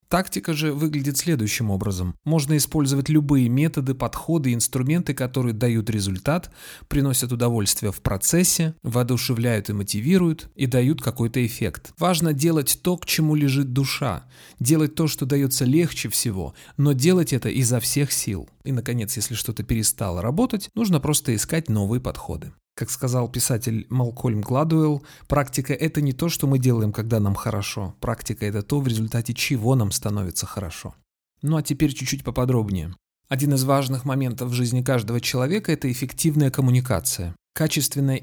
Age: 30-49